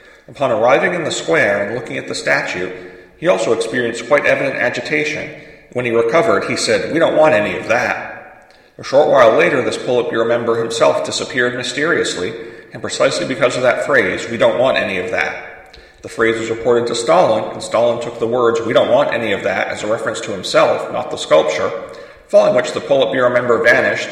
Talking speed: 200 wpm